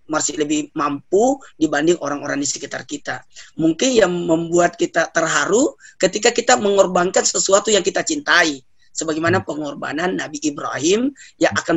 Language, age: English, 30-49